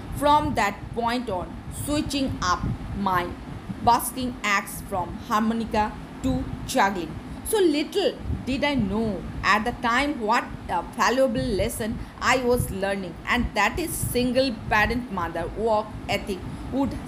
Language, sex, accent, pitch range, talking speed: Hindi, female, native, 200-245 Hz, 130 wpm